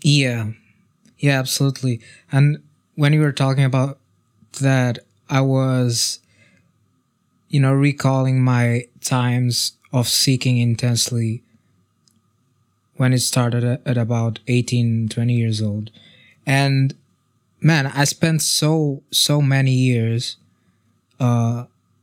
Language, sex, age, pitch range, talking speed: English, male, 20-39, 120-135 Hz, 105 wpm